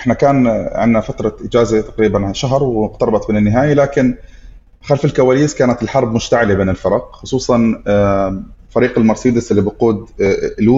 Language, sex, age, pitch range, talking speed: Arabic, male, 30-49, 105-130 Hz, 135 wpm